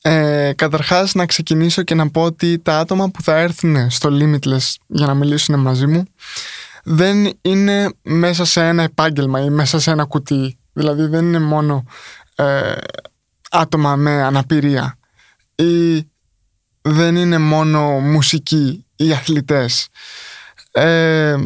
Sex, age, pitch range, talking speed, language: male, 20-39, 150-180 Hz, 130 wpm, Greek